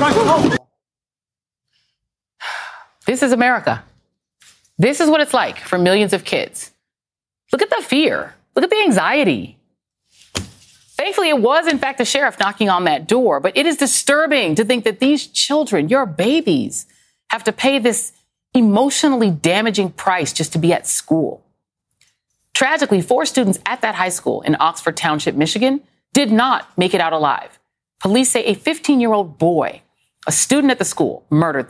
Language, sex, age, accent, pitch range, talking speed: English, female, 30-49, American, 175-260 Hz, 160 wpm